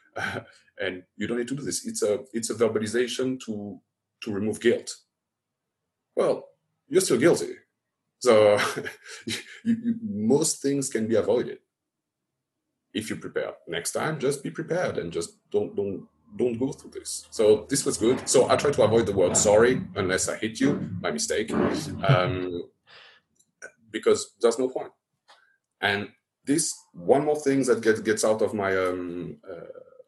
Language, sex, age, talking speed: English, male, 30-49, 165 wpm